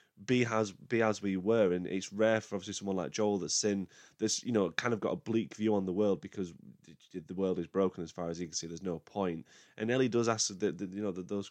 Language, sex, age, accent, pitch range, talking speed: English, male, 20-39, British, 90-110 Hz, 270 wpm